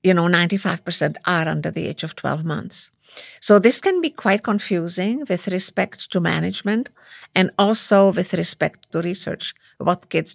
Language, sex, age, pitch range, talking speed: Hebrew, female, 50-69, 175-205 Hz, 160 wpm